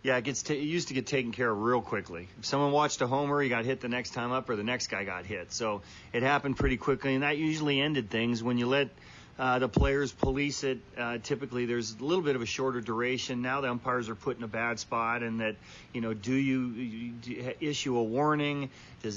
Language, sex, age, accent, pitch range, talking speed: English, male, 40-59, American, 120-140 Hz, 250 wpm